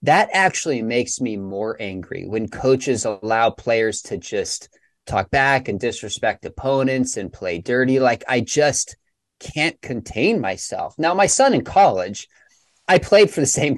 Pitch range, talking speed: 125-185 Hz, 155 wpm